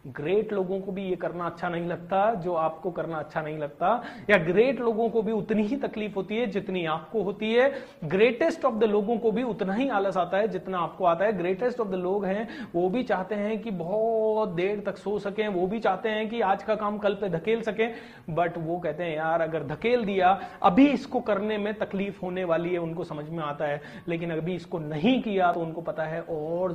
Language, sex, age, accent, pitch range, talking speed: Hindi, male, 30-49, native, 170-225 Hz, 230 wpm